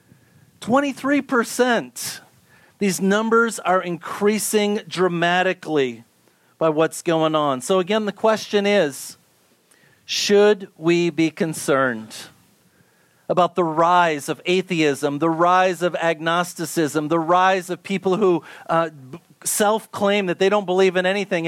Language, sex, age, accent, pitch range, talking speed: English, male, 40-59, American, 170-215 Hz, 110 wpm